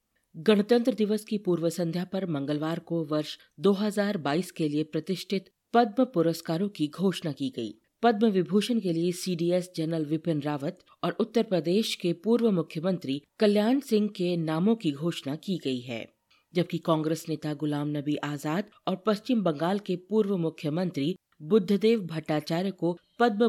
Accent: native